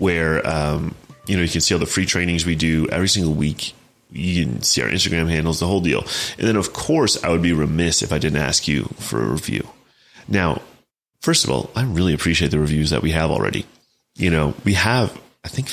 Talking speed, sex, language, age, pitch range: 230 wpm, male, English, 30-49, 75-95 Hz